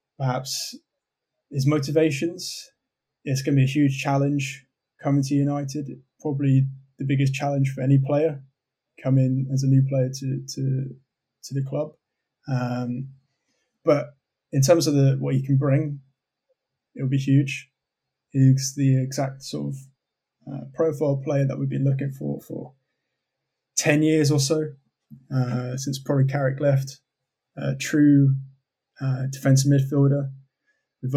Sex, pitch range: male, 130-145 Hz